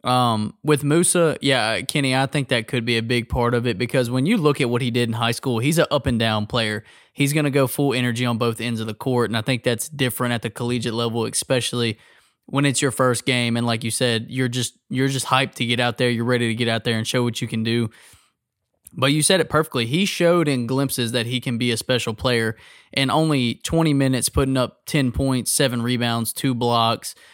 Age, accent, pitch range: 20-39, American, 120-135 Hz